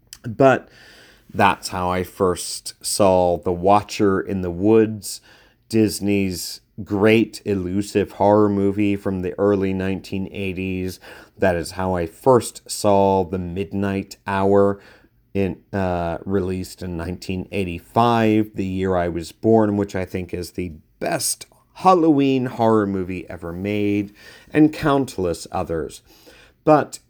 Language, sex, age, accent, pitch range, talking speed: English, male, 40-59, American, 95-120 Hz, 115 wpm